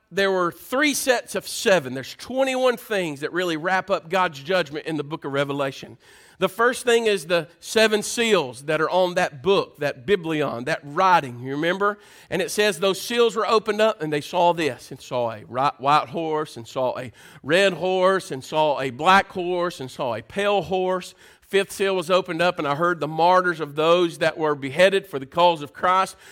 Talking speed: 205 wpm